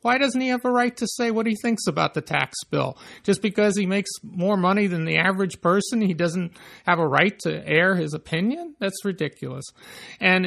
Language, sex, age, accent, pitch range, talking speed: English, male, 50-69, American, 165-205 Hz, 210 wpm